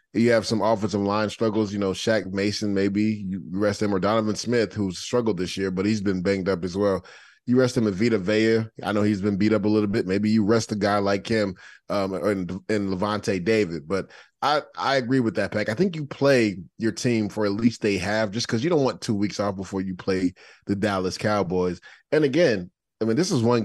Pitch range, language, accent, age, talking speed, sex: 100-125 Hz, English, American, 20-39, 240 wpm, male